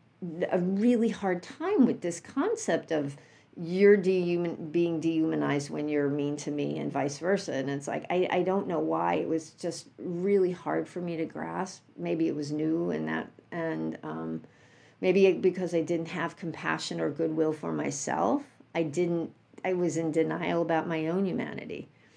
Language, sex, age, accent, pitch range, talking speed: English, female, 50-69, American, 150-185 Hz, 175 wpm